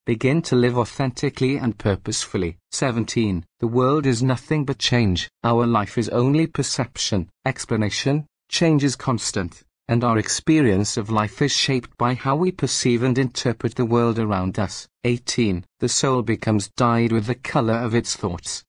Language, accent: English, British